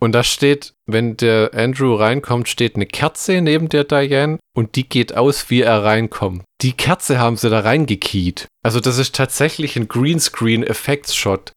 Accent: German